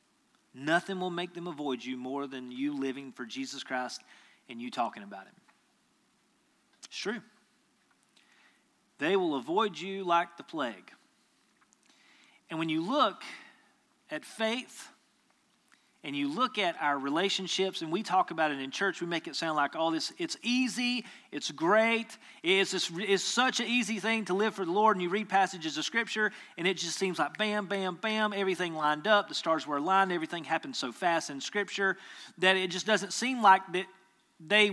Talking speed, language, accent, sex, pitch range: 175 wpm, English, American, male, 170-220 Hz